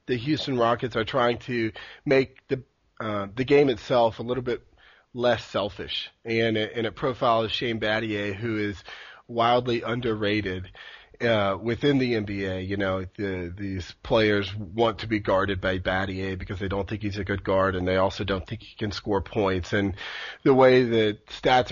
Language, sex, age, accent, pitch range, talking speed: English, male, 40-59, American, 105-135 Hz, 180 wpm